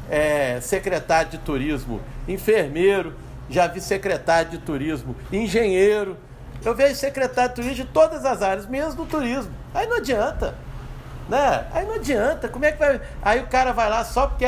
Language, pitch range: Portuguese, 135-215 Hz